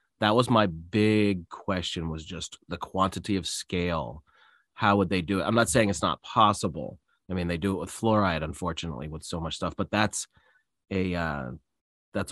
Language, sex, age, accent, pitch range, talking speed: English, male, 30-49, American, 90-110 Hz, 190 wpm